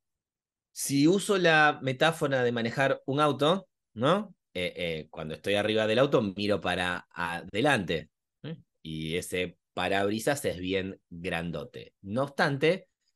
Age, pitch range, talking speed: 30-49, 95-140 Hz, 130 wpm